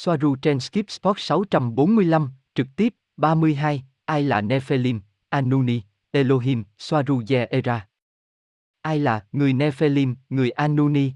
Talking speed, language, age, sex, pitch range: 115 wpm, Vietnamese, 20-39, male, 110-155 Hz